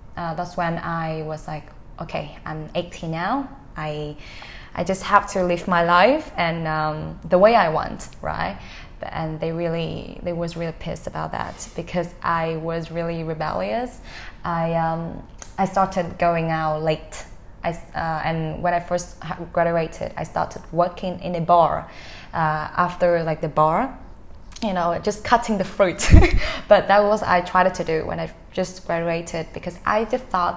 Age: 20-39